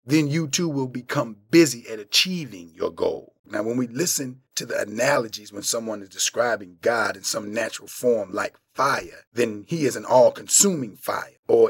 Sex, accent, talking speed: male, American, 180 wpm